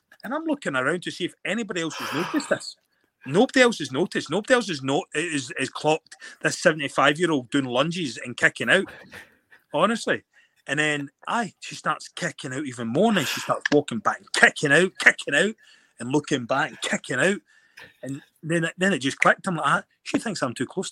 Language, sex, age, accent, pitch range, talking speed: English, male, 30-49, British, 155-245 Hz, 205 wpm